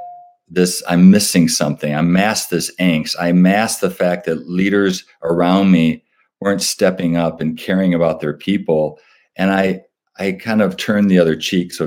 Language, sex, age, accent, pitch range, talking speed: English, male, 50-69, American, 80-95 Hz, 170 wpm